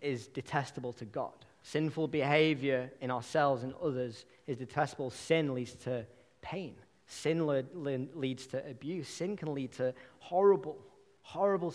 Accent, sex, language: British, male, English